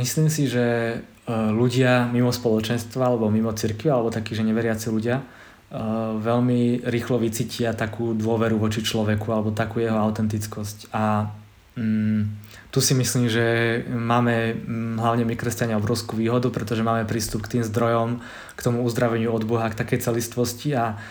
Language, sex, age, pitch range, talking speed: Czech, male, 20-39, 115-120 Hz, 150 wpm